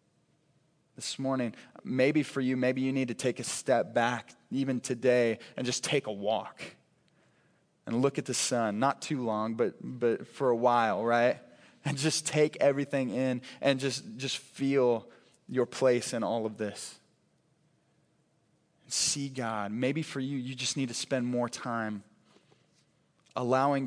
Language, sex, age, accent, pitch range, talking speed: English, male, 20-39, American, 115-135 Hz, 155 wpm